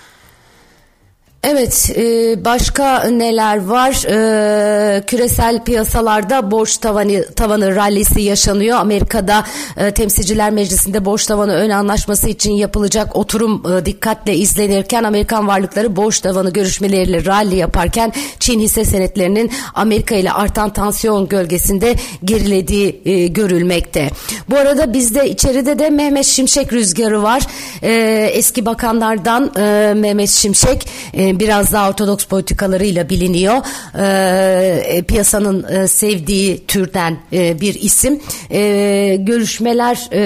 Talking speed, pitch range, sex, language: 95 wpm, 190-225 Hz, female, Turkish